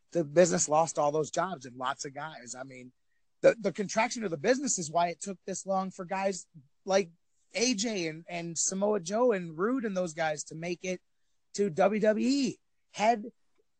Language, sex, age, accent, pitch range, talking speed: English, male, 30-49, American, 140-195 Hz, 185 wpm